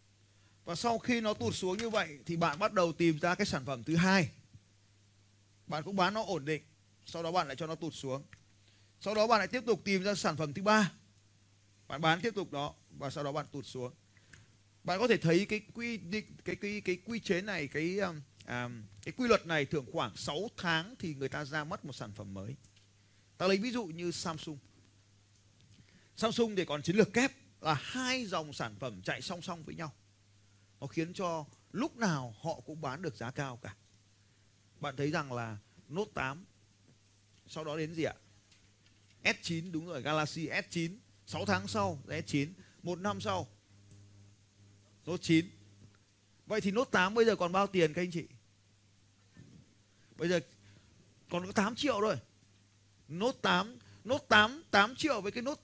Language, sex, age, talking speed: Vietnamese, male, 30-49, 190 wpm